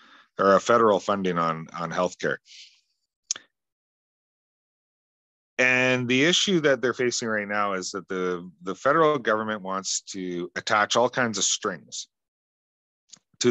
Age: 40-59